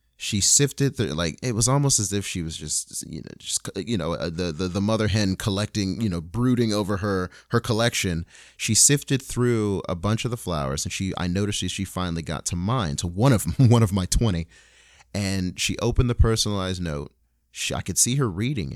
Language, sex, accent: English, male, American